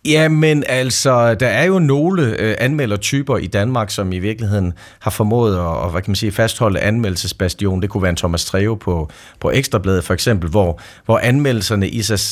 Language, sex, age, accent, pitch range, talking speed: Danish, male, 40-59, native, 95-115 Hz, 185 wpm